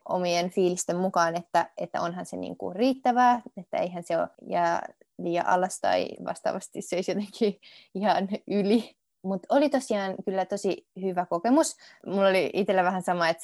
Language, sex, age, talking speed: Finnish, female, 20-39, 165 wpm